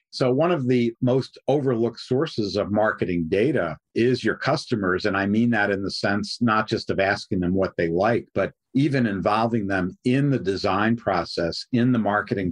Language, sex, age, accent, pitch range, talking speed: English, male, 50-69, American, 95-120 Hz, 185 wpm